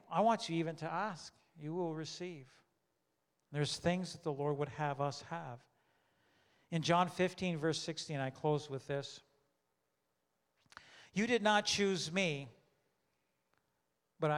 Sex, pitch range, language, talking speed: male, 120-155 Hz, English, 140 wpm